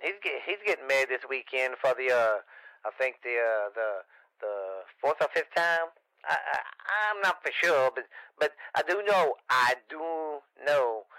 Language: English